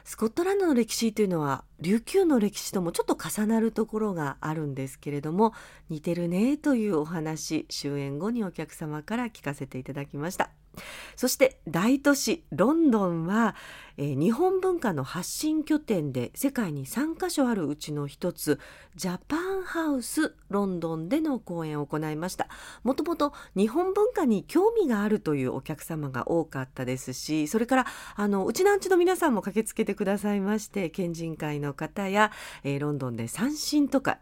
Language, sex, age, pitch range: Japanese, female, 40-59, 155-240 Hz